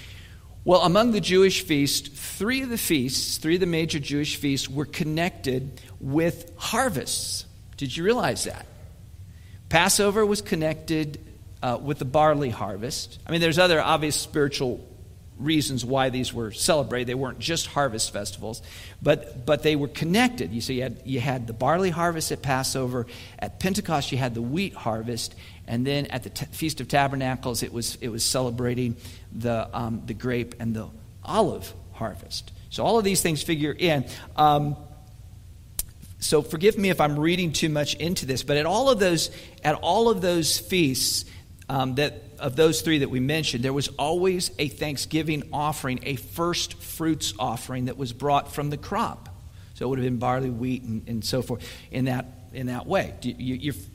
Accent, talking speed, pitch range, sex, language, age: American, 180 wpm, 115-155 Hz, male, English, 50-69